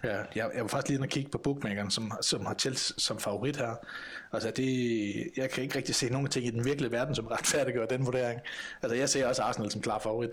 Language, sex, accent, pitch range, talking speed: Danish, male, native, 115-135 Hz, 245 wpm